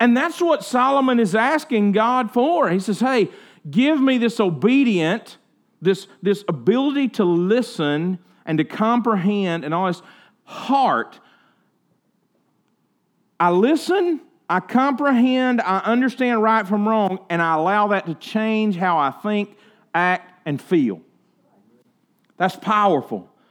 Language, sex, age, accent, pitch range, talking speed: English, male, 40-59, American, 170-235 Hz, 130 wpm